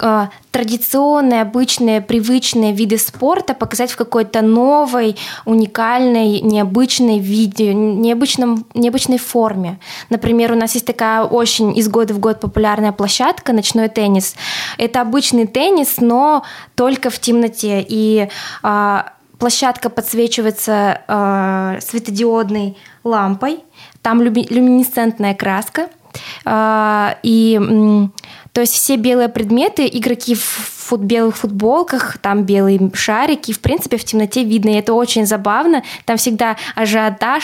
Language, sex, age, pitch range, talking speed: Russian, female, 20-39, 215-245 Hz, 120 wpm